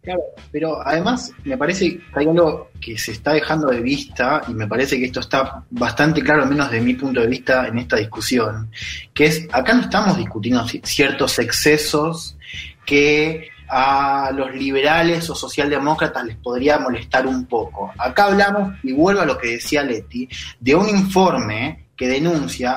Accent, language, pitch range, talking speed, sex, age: Argentinian, Spanish, 120-155 Hz, 170 wpm, male, 20-39